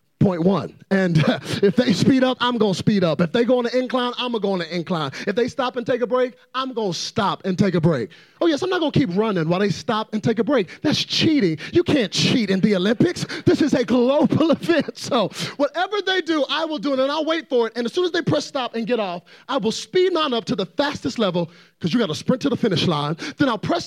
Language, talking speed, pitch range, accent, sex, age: English, 275 wpm, 160-255 Hz, American, male, 30-49